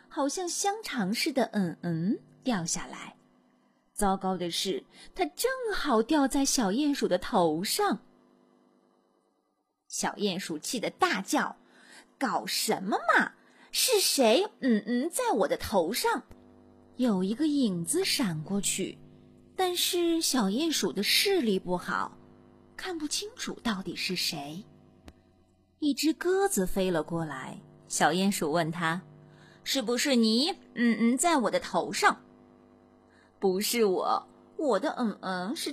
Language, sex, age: Chinese, female, 30-49